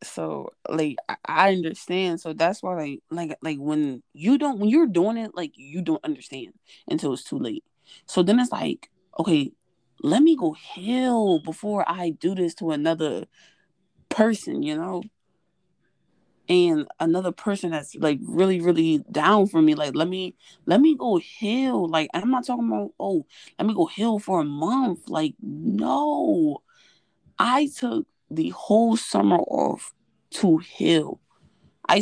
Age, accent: 20-39, American